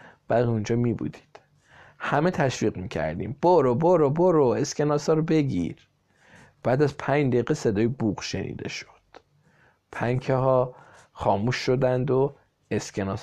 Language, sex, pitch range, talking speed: Persian, male, 115-140 Hz, 130 wpm